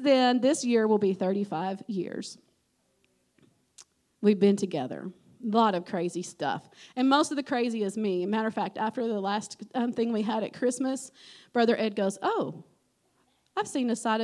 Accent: American